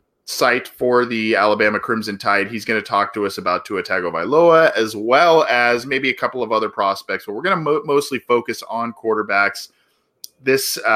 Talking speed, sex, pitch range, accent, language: 185 wpm, male, 100-130 Hz, American, English